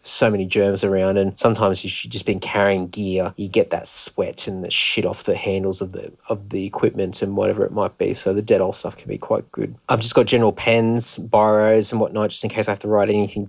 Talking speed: 255 wpm